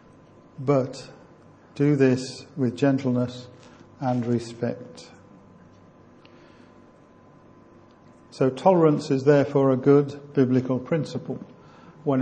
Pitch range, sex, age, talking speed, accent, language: 125-145 Hz, male, 50-69, 80 wpm, British, English